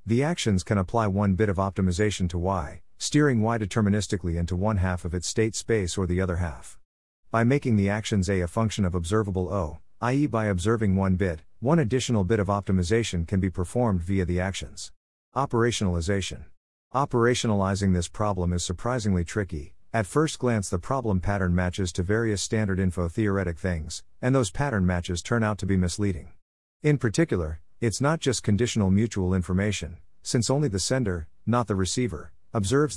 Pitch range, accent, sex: 90-115 Hz, American, male